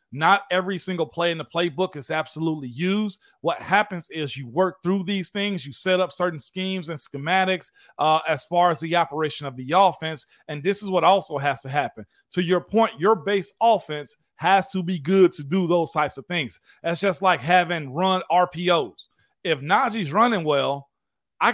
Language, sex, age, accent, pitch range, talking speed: English, male, 40-59, American, 155-195 Hz, 190 wpm